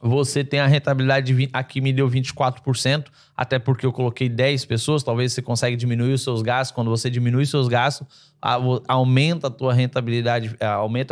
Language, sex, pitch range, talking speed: Portuguese, male, 120-140 Hz, 180 wpm